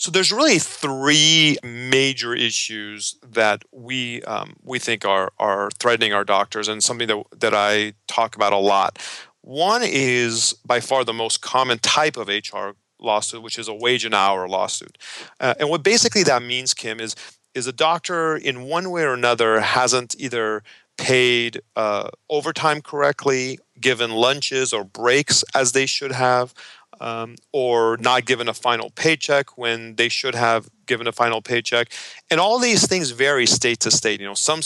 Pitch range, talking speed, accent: 115-140 Hz, 170 wpm, American